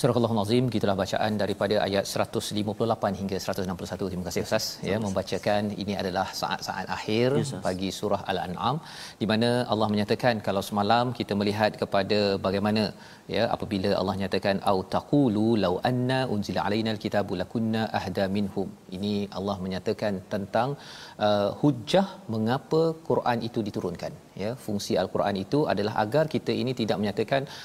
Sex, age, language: male, 40-59, Malayalam